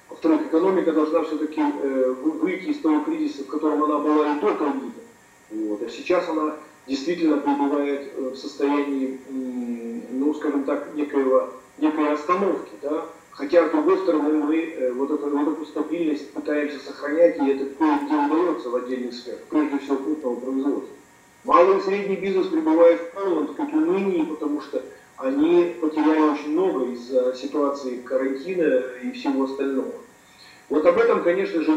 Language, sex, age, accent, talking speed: Russian, male, 40-59, native, 145 wpm